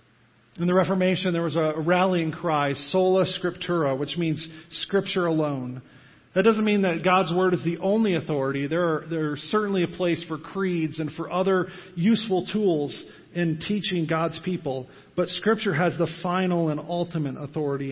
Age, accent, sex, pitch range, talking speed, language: 40-59, American, male, 155-185 Hz, 165 wpm, English